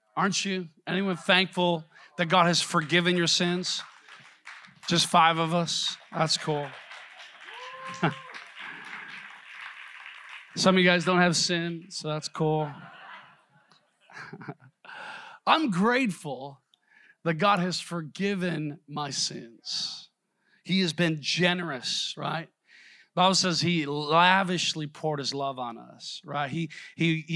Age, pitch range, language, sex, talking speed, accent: 40-59, 150-180 Hz, English, male, 115 wpm, American